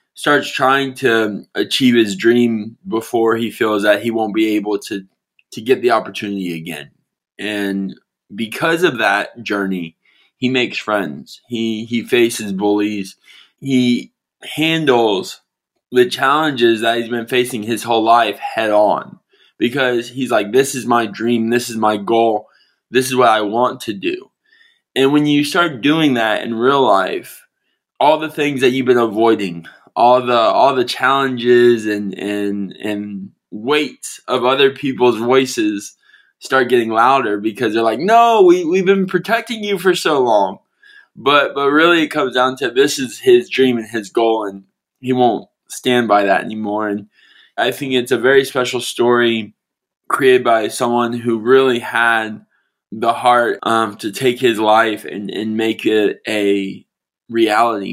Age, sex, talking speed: 20-39, male, 160 wpm